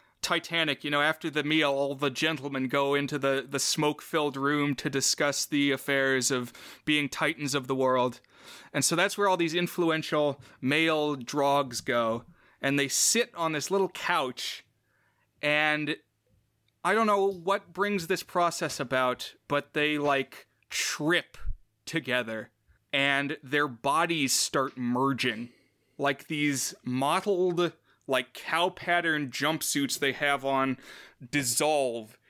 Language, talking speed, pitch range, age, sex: English, 135 wpm, 135-170 Hz, 30-49, male